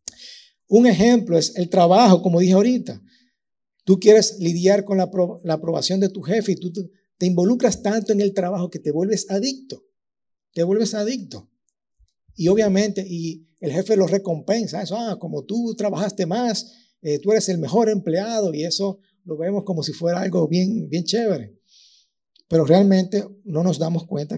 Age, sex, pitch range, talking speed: 50-69, male, 145-195 Hz, 170 wpm